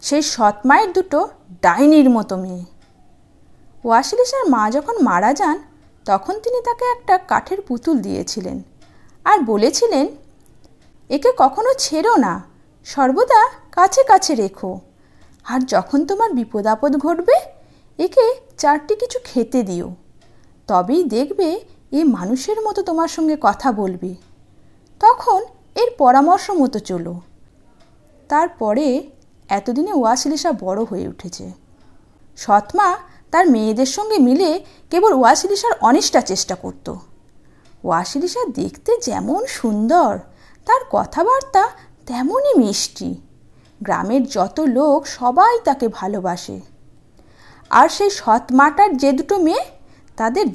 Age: 50-69